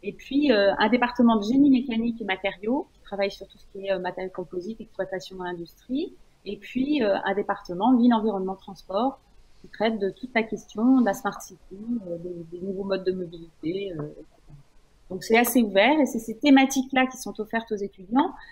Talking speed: 200 wpm